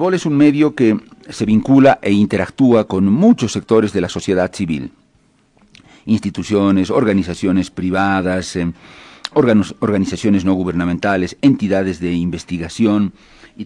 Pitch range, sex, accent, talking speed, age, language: 90-105 Hz, male, Spanish, 125 wpm, 50-69, Spanish